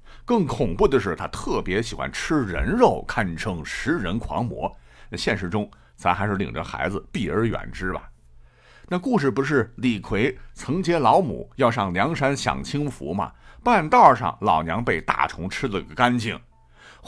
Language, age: Chinese, 50-69